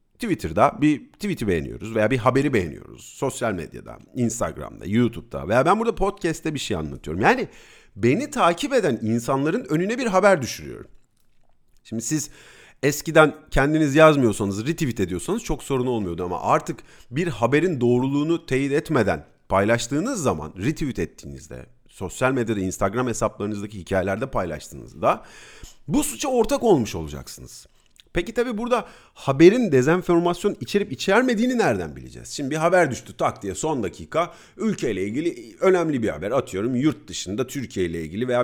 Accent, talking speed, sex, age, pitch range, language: native, 140 wpm, male, 40-59, 105-175 Hz, Turkish